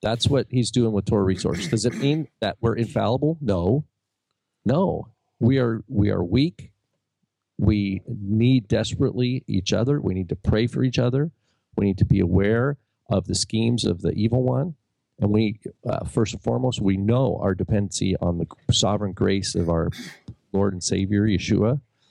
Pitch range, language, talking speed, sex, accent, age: 100-125 Hz, English, 175 wpm, male, American, 40-59